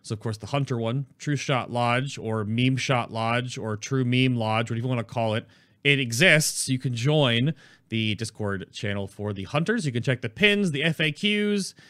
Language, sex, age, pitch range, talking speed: English, male, 30-49, 110-150 Hz, 205 wpm